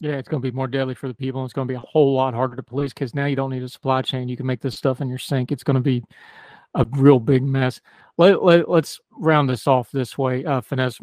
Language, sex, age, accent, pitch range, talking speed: English, male, 40-59, American, 130-145 Hz, 300 wpm